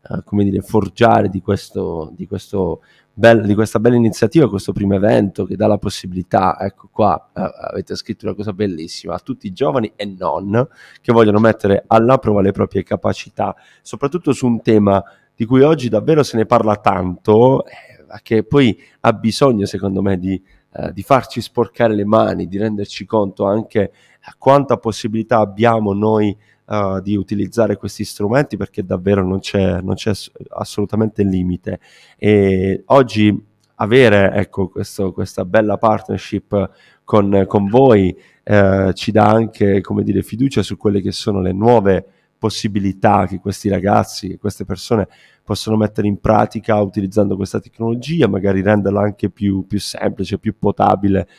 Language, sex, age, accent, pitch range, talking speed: Italian, male, 30-49, native, 100-115 Hz, 150 wpm